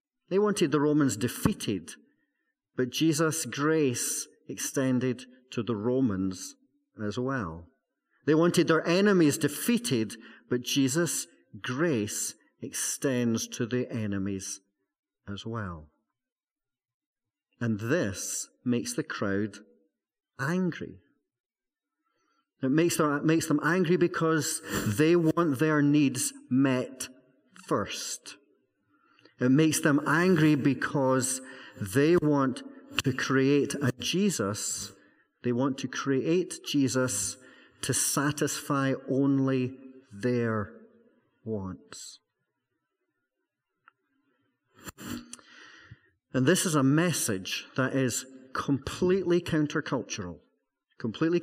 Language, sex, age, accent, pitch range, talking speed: English, male, 40-59, British, 120-160 Hz, 90 wpm